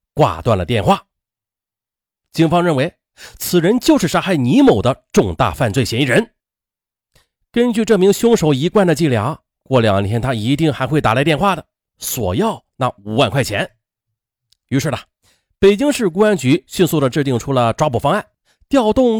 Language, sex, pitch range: Chinese, male, 115-190 Hz